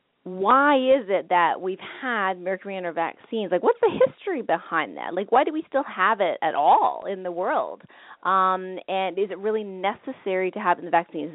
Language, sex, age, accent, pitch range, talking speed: English, female, 30-49, American, 175-225 Hz, 200 wpm